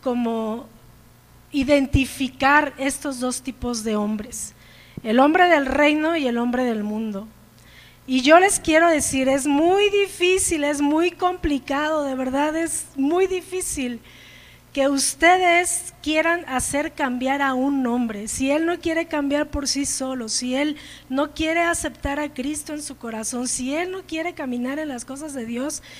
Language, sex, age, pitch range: Spanish, female, 40-59, 255-330 Hz